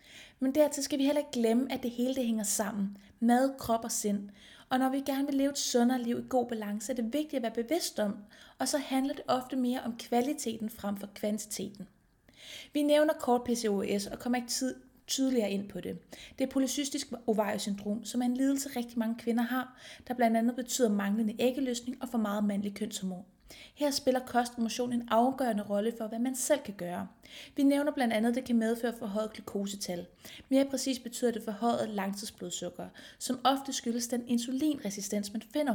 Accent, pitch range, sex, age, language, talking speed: native, 210-265 Hz, female, 30-49, Danish, 200 wpm